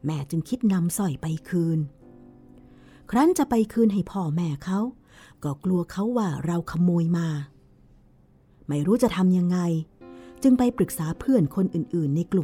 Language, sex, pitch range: Thai, female, 150-190 Hz